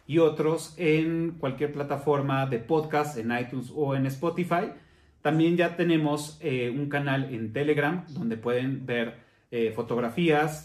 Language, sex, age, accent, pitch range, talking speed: Spanish, male, 30-49, Mexican, 125-170 Hz, 140 wpm